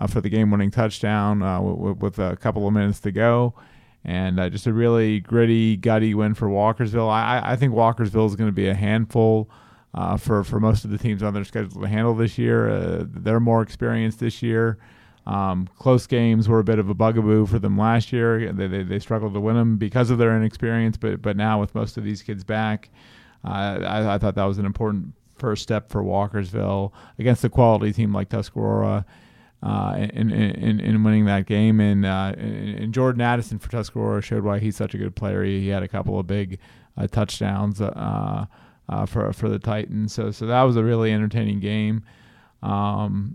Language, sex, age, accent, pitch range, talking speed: English, male, 30-49, American, 105-115 Hz, 205 wpm